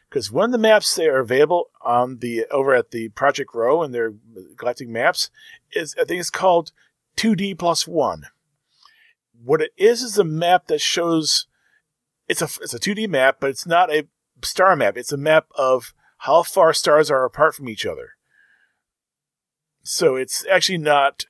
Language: English